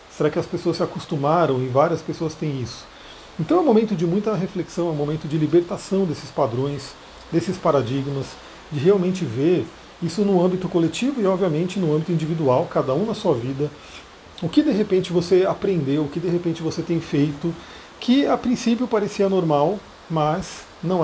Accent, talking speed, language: Brazilian, 185 wpm, Portuguese